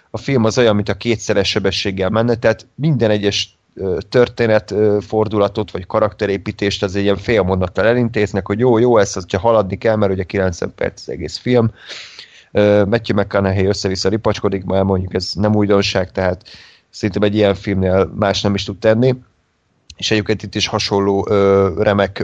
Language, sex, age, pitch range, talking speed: Hungarian, male, 30-49, 95-110 Hz, 165 wpm